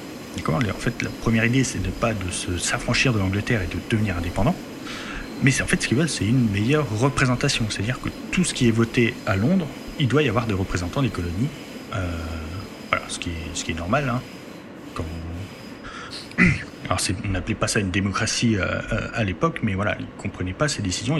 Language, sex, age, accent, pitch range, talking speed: French, male, 30-49, French, 95-135 Hz, 220 wpm